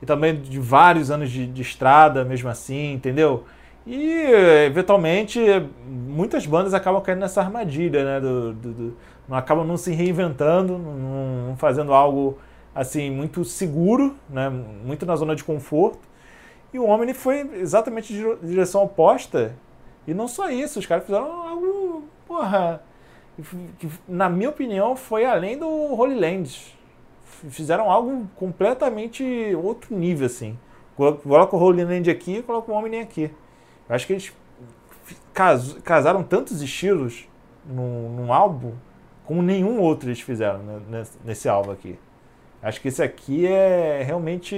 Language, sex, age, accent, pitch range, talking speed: Portuguese, male, 20-39, Brazilian, 135-190 Hz, 150 wpm